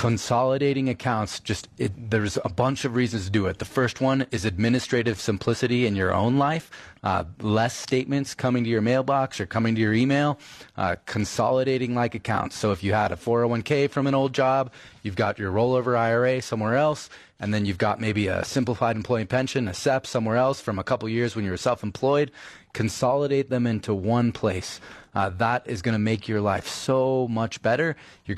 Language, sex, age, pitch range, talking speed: English, male, 30-49, 105-130 Hz, 200 wpm